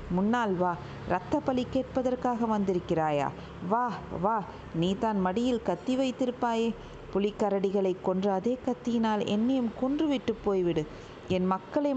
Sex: female